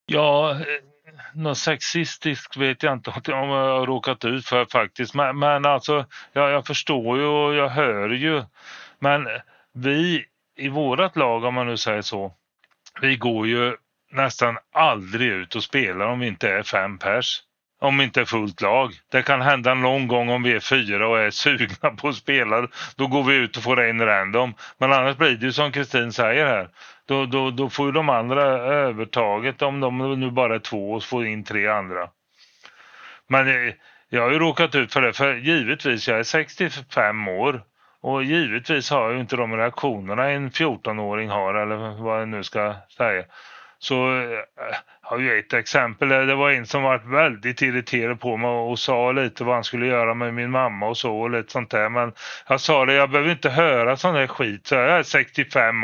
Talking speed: 195 wpm